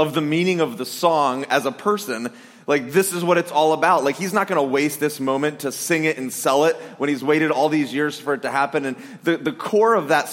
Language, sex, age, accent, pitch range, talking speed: English, male, 30-49, American, 150-190 Hz, 265 wpm